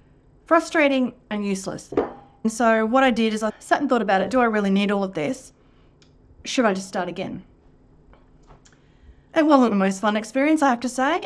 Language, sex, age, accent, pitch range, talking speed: English, female, 30-49, Australian, 185-240 Hz, 195 wpm